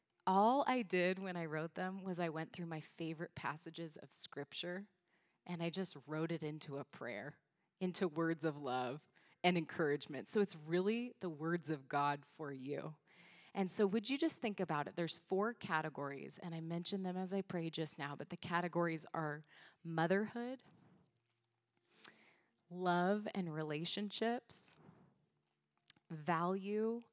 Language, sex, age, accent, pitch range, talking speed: English, female, 20-39, American, 160-220 Hz, 150 wpm